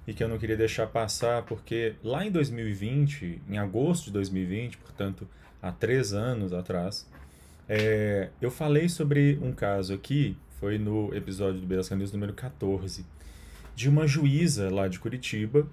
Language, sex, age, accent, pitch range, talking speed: Portuguese, male, 30-49, Brazilian, 100-145 Hz, 155 wpm